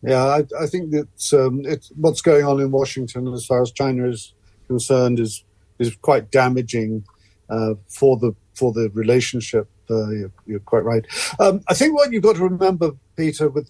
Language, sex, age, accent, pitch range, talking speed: English, male, 50-69, British, 125-165 Hz, 195 wpm